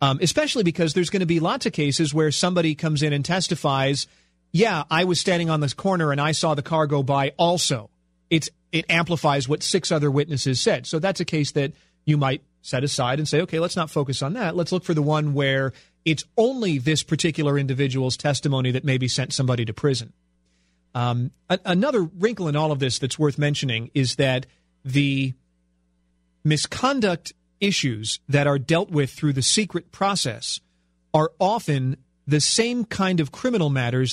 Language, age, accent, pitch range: English, 40-59, American, 135-175 Hz